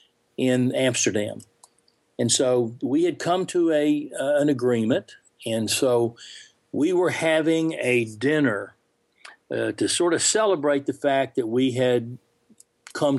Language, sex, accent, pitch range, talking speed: English, male, American, 115-150 Hz, 135 wpm